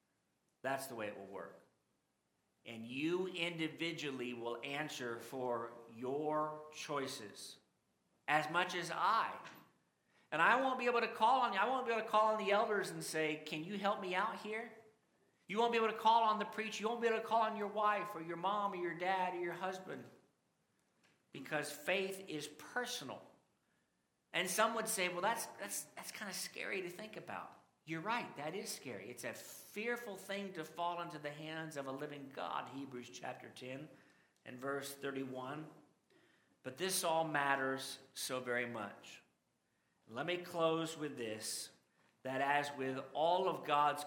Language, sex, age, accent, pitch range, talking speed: English, male, 50-69, American, 130-185 Hz, 175 wpm